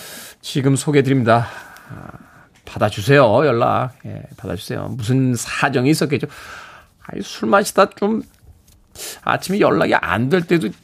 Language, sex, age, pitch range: Korean, male, 40-59, 115-155 Hz